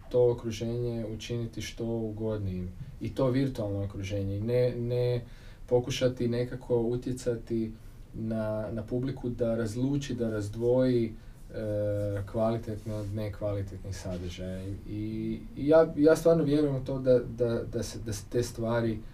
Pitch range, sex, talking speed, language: 110-130 Hz, male, 130 wpm, Croatian